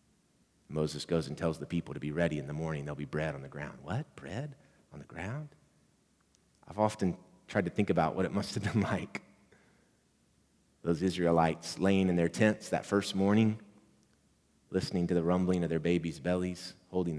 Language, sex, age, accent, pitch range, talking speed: English, male, 30-49, American, 85-110 Hz, 185 wpm